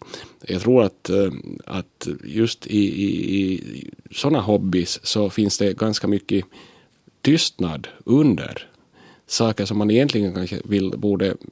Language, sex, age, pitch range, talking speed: Finnish, male, 30-49, 95-115 Hz, 125 wpm